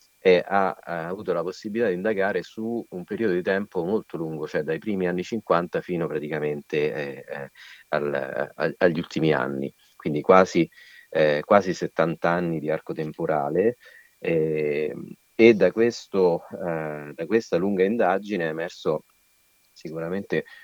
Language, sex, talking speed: Italian, male, 135 wpm